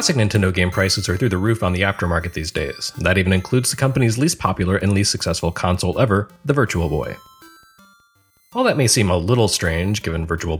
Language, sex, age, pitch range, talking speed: English, male, 30-49, 90-125 Hz, 210 wpm